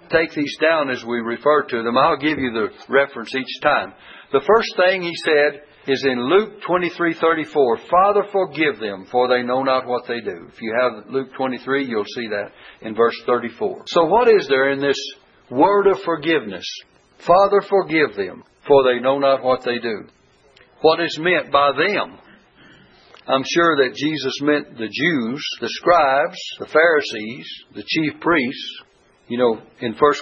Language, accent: English, American